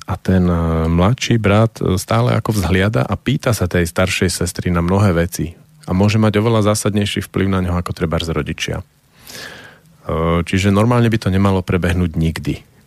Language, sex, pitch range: Slovak, male, 85-110 Hz